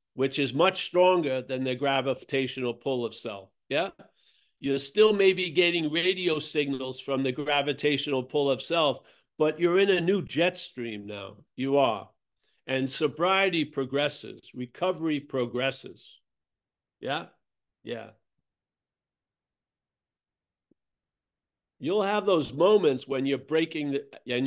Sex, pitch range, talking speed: male, 130-160 Hz, 120 wpm